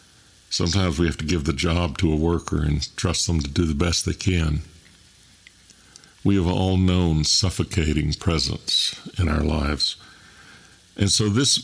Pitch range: 85-95 Hz